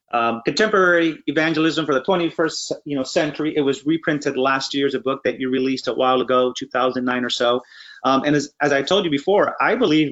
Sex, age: male, 30-49